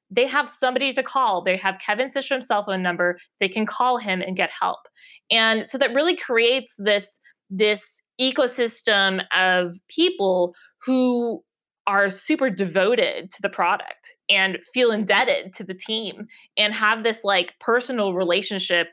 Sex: female